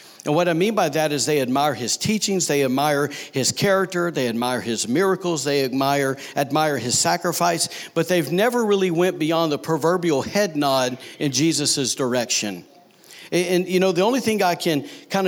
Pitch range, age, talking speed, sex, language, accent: 145-180 Hz, 50-69, 185 wpm, male, English, American